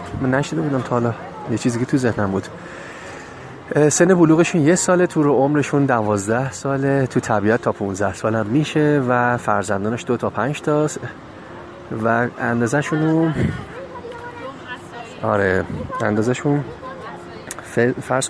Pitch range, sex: 105-140 Hz, male